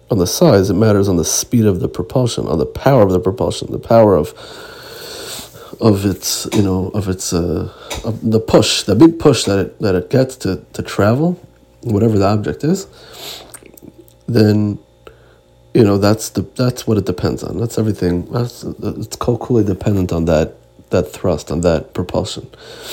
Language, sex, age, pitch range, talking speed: Hebrew, male, 30-49, 95-125 Hz, 185 wpm